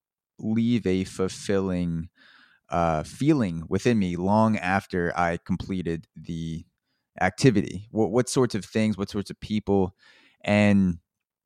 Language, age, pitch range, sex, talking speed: English, 20-39, 90-110 Hz, male, 120 wpm